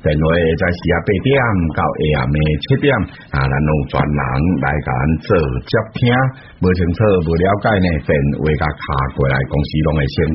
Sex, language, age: male, Chinese, 60-79